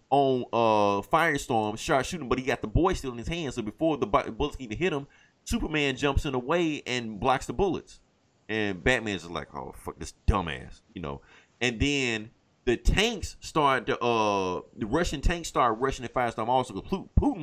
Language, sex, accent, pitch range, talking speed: English, male, American, 110-150 Hz, 200 wpm